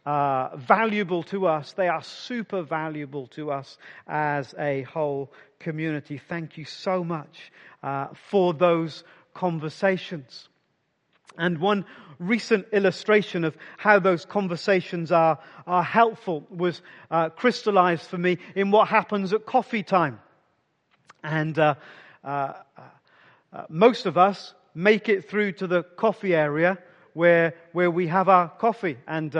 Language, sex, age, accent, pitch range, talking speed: English, male, 40-59, British, 175-230 Hz, 135 wpm